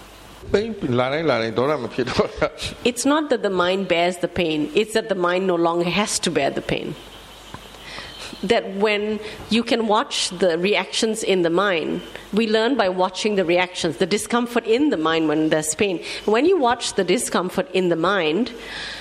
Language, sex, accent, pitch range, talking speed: English, female, Indian, 170-215 Hz, 160 wpm